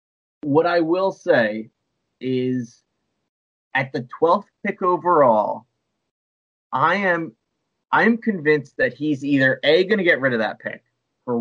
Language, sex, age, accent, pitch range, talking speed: English, male, 20-39, American, 115-145 Hz, 130 wpm